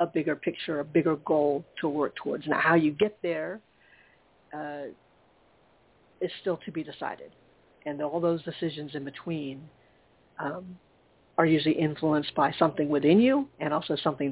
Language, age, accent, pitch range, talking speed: English, 40-59, American, 145-170 Hz, 155 wpm